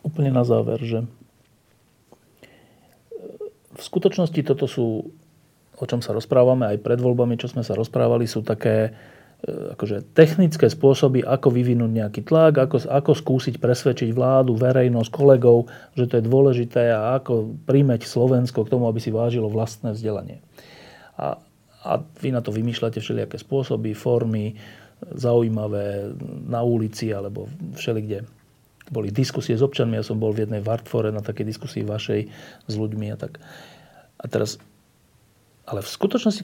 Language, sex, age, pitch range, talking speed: Slovak, male, 40-59, 115-140 Hz, 145 wpm